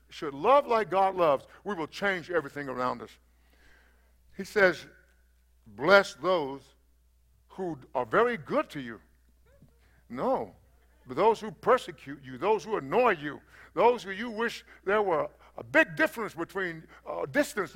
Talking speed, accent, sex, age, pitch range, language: 150 wpm, American, male, 60-79, 150-230 Hz, English